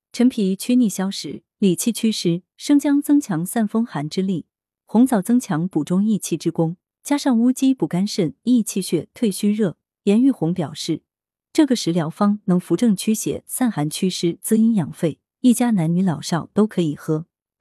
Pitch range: 165-240 Hz